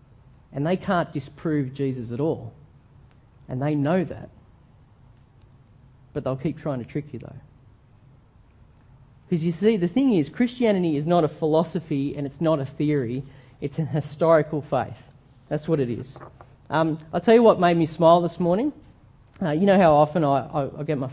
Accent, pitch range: Australian, 135-180 Hz